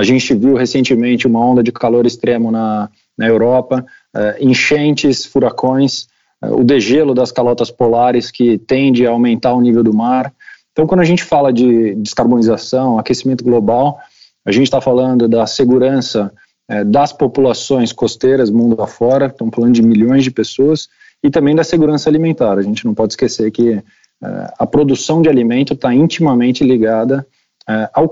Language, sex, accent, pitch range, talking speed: Portuguese, male, Brazilian, 115-140 Hz, 165 wpm